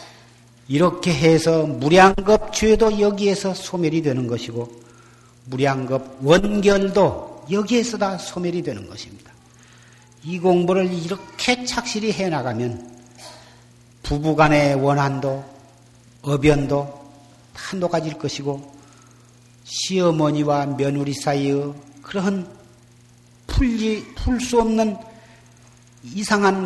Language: Korean